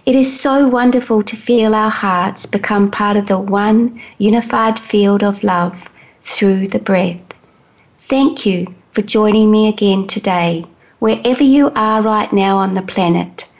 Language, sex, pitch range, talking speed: English, female, 195-235 Hz, 155 wpm